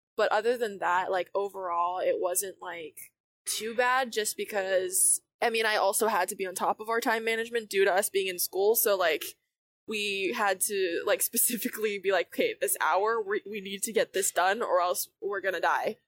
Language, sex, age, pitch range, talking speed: English, female, 10-29, 190-235 Hz, 210 wpm